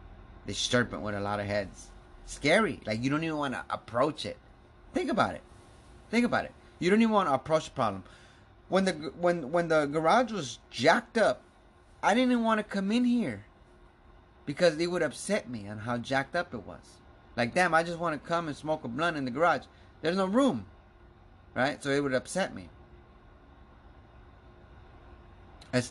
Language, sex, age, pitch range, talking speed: English, male, 30-49, 110-175 Hz, 185 wpm